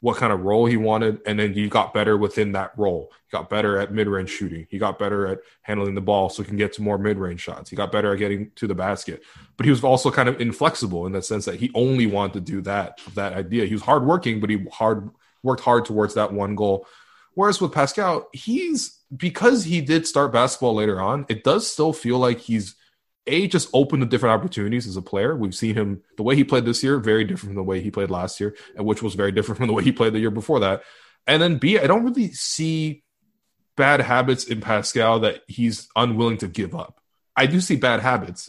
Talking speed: 240 wpm